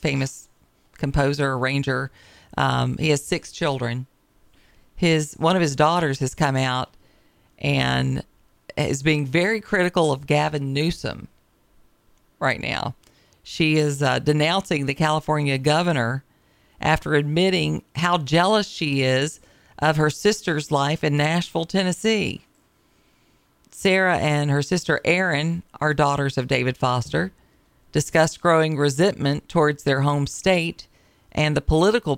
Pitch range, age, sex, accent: 135-170 Hz, 50-69, female, American